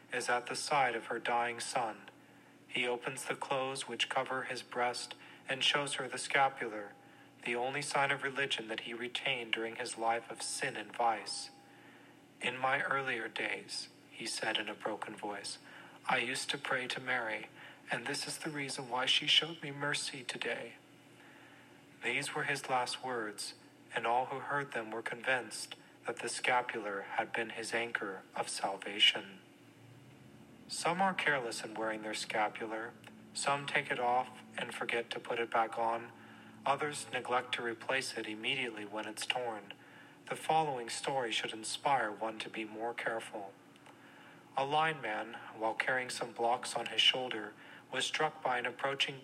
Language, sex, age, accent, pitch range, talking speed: English, male, 40-59, American, 115-140 Hz, 165 wpm